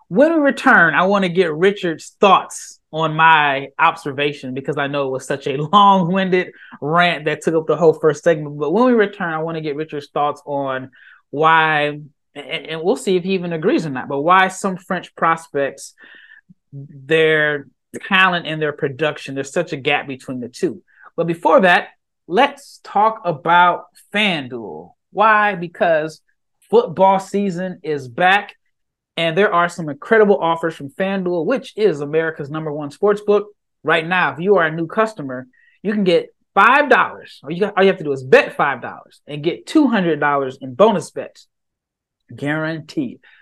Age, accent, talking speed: 20-39, American, 165 wpm